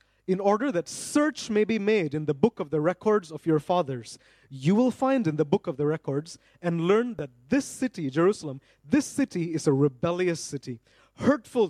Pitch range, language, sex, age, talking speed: 155-215 Hz, English, male, 30-49, 195 wpm